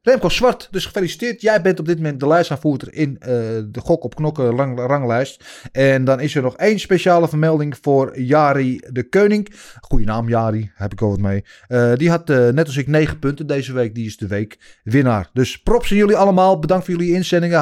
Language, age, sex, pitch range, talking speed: Dutch, 30-49, male, 125-165 Hz, 220 wpm